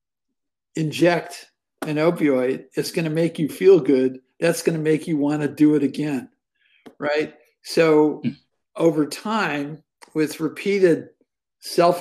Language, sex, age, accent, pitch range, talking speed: English, male, 50-69, American, 145-170 Hz, 135 wpm